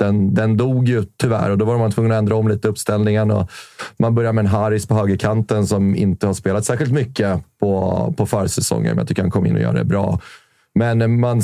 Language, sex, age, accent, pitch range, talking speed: Swedish, male, 30-49, native, 100-125 Hz, 230 wpm